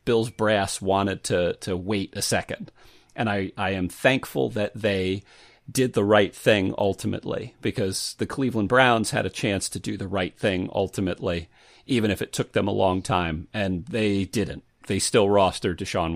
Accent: American